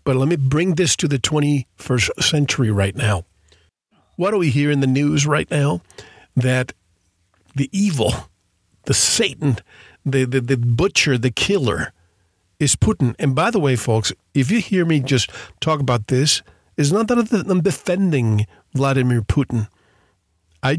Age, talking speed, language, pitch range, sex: 50-69, 155 wpm, English, 110-155 Hz, male